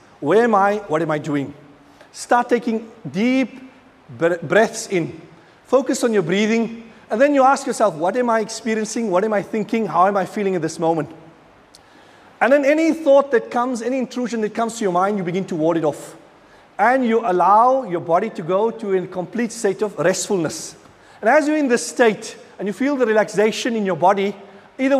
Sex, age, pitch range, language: male, 40-59, 180-240 Hz, English